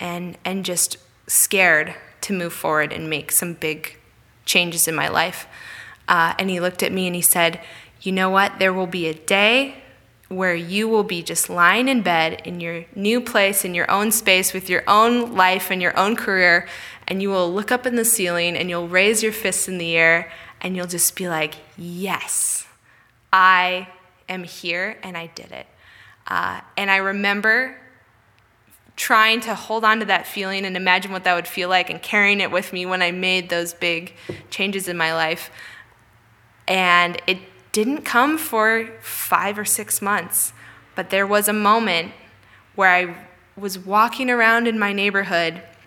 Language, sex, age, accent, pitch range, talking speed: English, female, 20-39, American, 170-200 Hz, 180 wpm